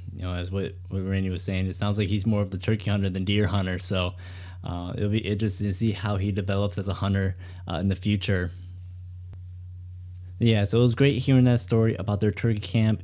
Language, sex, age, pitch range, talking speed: English, male, 20-39, 90-105 Hz, 230 wpm